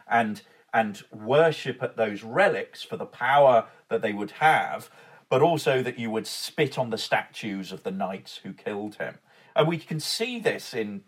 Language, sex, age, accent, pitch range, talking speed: English, male, 40-59, British, 115-155 Hz, 185 wpm